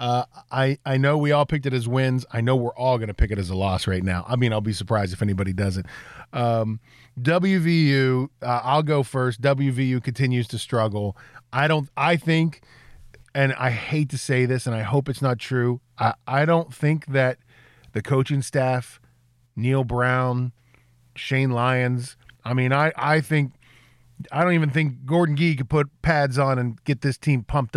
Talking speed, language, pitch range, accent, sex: 190 wpm, English, 120-140 Hz, American, male